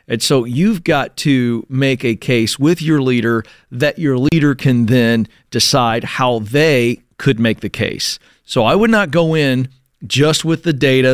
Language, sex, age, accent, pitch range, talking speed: English, male, 40-59, American, 130-175 Hz, 180 wpm